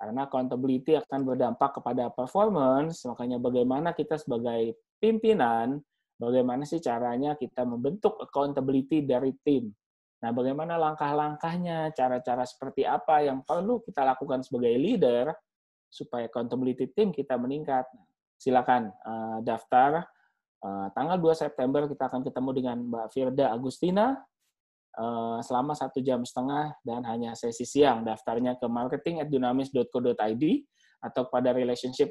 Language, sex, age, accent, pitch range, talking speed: English, male, 20-39, Indonesian, 120-150 Hz, 120 wpm